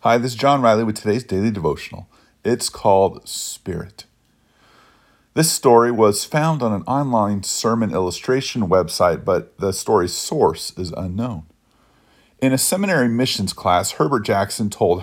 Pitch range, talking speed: 95-130 Hz, 145 wpm